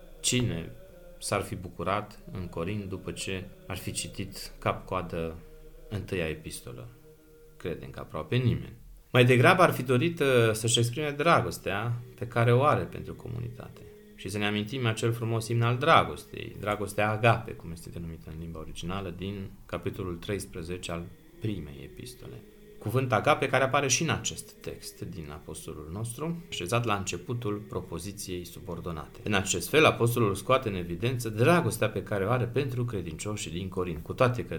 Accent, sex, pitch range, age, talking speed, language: native, male, 90-125 Hz, 30-49, 155 wpm, Romanian